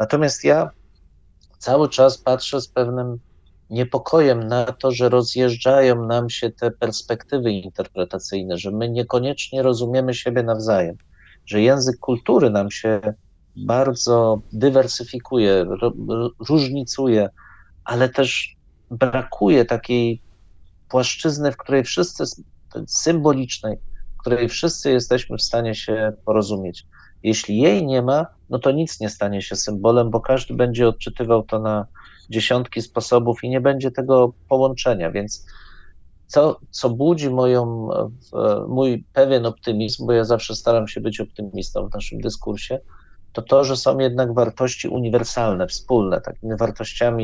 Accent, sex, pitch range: native, male, 105-130 Hz